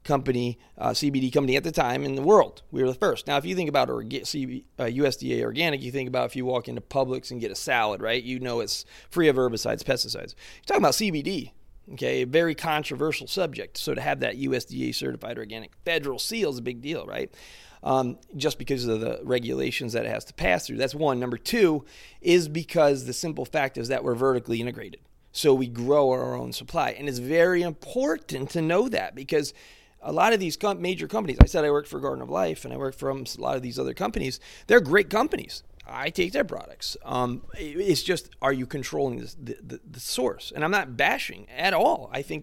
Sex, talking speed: male, 220 wpm